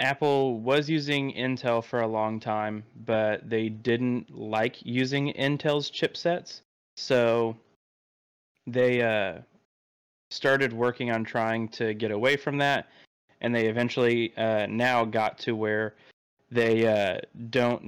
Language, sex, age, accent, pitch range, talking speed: English, male, 20-39, American, 105-120 Hz, 130 wpm